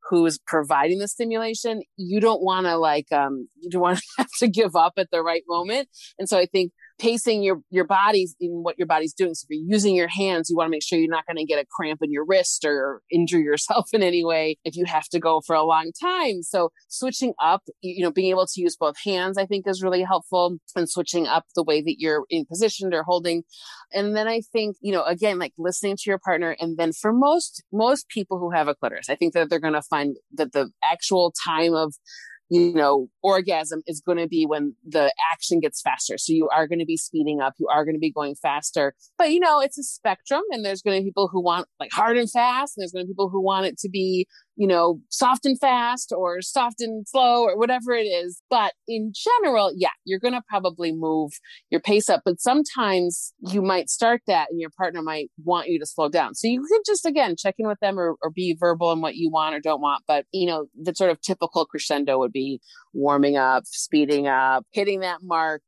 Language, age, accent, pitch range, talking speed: English, 30-49, American, 160-205 Hz, 240 wpm